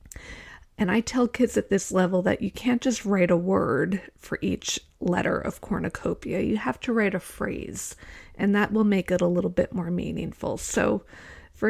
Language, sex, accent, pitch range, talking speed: English, female, American, 180-215 Hz, 190 wpm